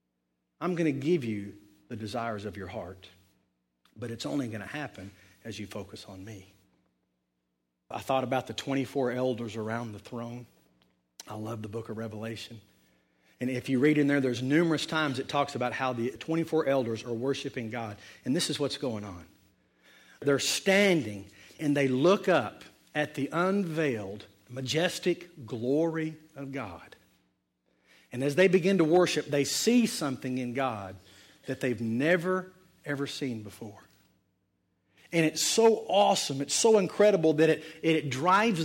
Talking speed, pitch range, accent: 160 wpm, 110-170 Hz, American